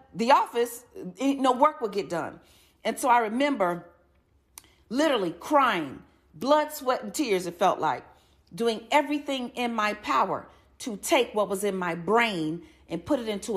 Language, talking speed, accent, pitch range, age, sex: English, 160 wpm, American, 200-250 Hz, 40-59, female